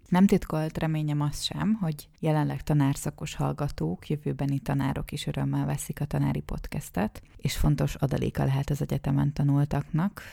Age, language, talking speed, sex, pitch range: 30-49, Hungarian, 140 wpm, female, 135-155 Hz